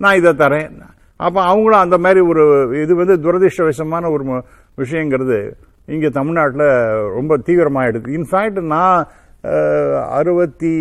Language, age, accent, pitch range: Tamil, 50-69, native, 145-180 Hz